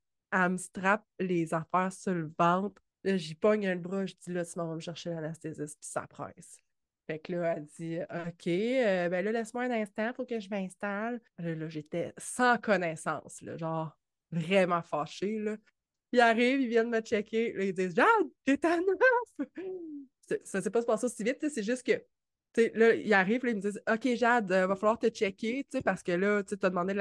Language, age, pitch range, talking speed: French, 20-39, 175-220 Hz, 205 wpm